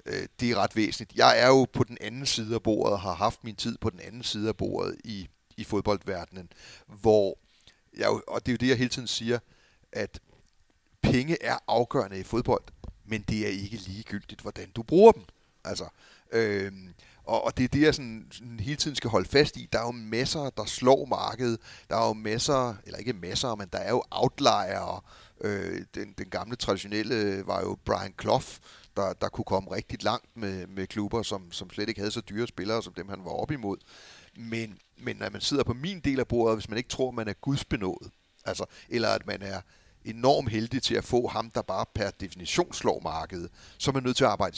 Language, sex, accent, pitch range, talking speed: Danish, male, native, 100-120 Hz, 215 wpm